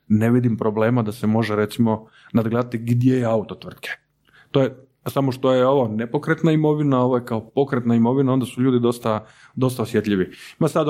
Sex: male